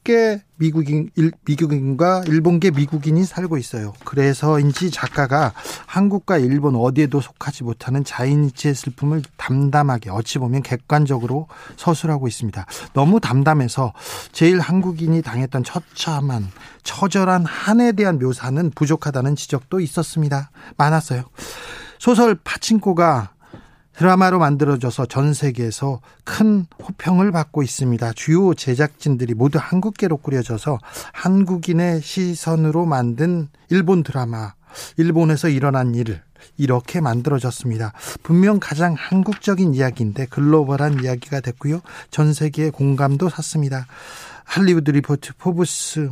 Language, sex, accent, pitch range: Korean, male, native, 135-175 Hz